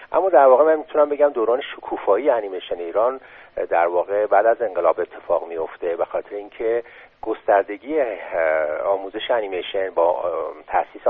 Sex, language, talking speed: male, Persian, 130 wpm